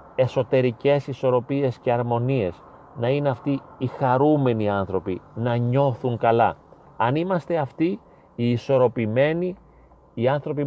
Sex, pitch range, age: male, 125-150 Hz, 30-49